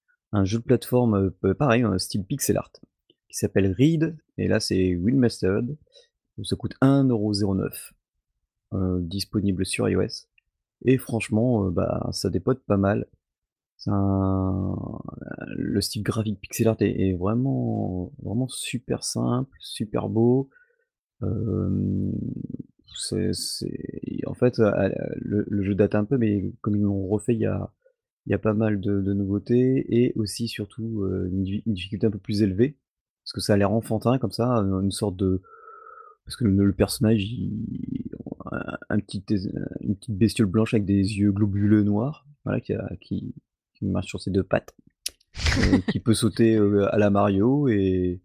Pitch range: 100-120 Hz